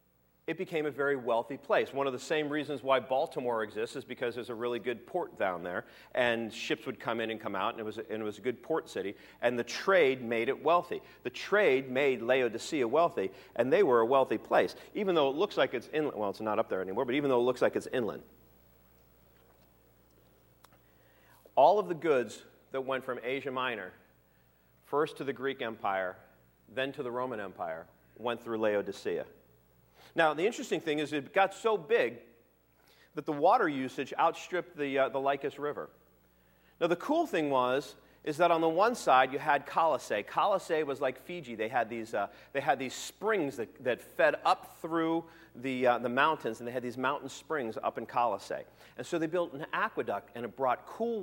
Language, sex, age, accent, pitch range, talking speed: English, male, 40-59, American, 110-155 Hz, 205 wpm